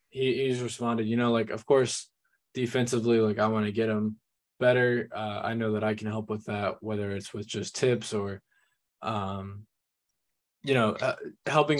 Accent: American